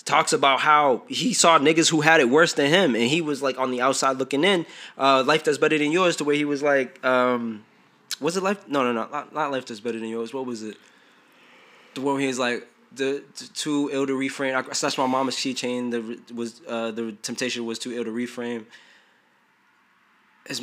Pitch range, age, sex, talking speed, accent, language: 125-150 Hz, 20-39, male, 220 wpm, American, English